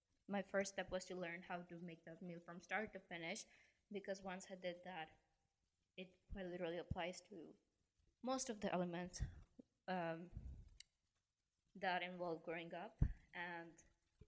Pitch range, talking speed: 175-195 Hz, 145 wpm